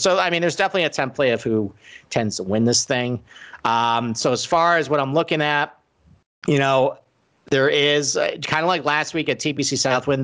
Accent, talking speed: American, 210 wpm